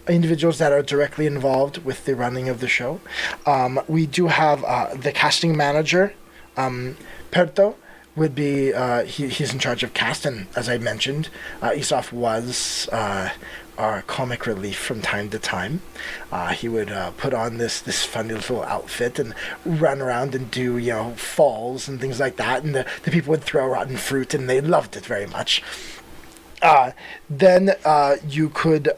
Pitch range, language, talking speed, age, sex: 130-180 Hz, English, 180 wpm, 20-39, male